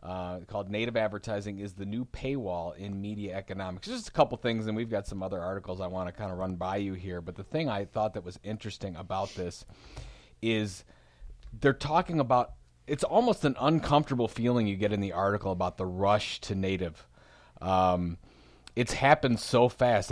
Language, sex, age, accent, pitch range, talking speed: English, male, 30-49, American, 95-125 Hz, 190 wpm